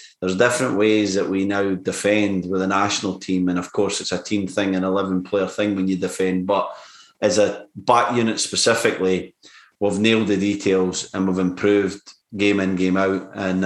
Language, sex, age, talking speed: English, male, 30-49, 195 wpm